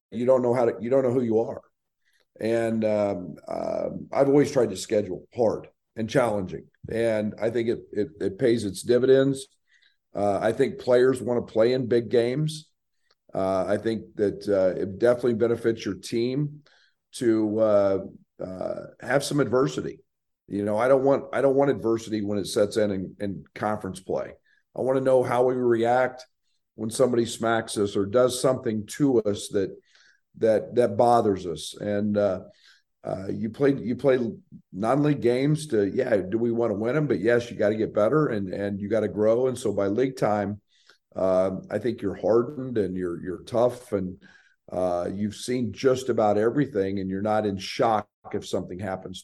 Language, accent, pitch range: English, American, 105-130 Hz